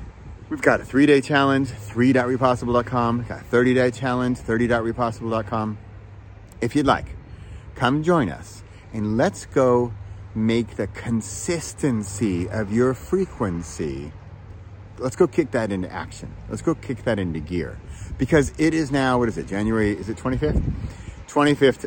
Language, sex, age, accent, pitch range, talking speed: English, male, 40-59, American, 95-135 Hz, 135 wpm